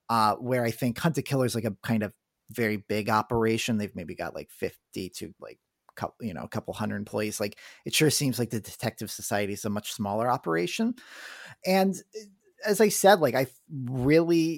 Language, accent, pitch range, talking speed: English, American, 110-145 Hz, 200 wpm